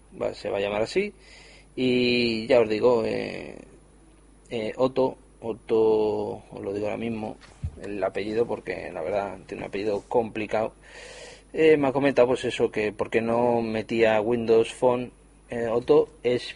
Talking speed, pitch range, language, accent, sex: 155 wpm, 115-150 Hz, Spanish, Spanish, male